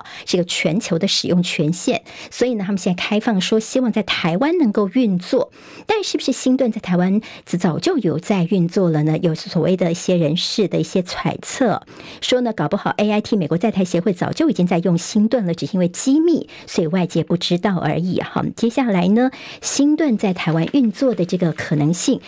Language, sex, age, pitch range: Chinese, male, 50-69, 175-235 Hz